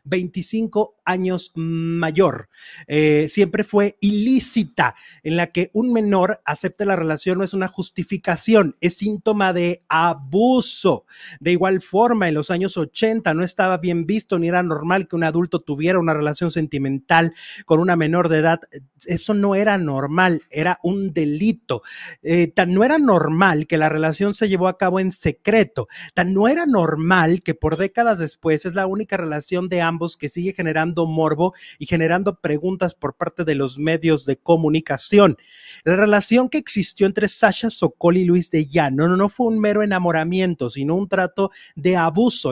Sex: male